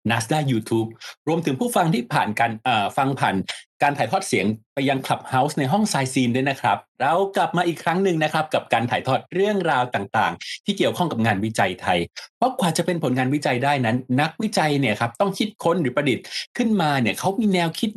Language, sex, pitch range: Thai, male, 120-175 Hz